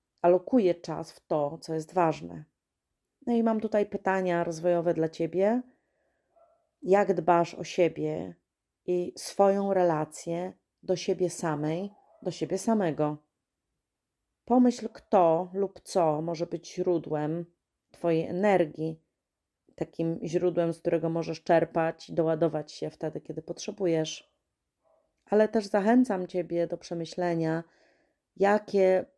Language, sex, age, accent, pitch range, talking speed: Polish, female, 30-49, native, 155-180 Hz, 115 wpm